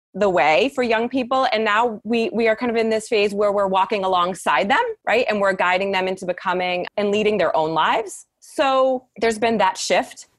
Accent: American